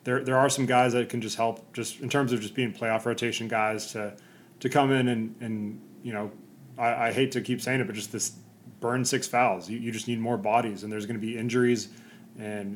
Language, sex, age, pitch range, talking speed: English, male, 20-39, 110-125 Hz, 245 wpm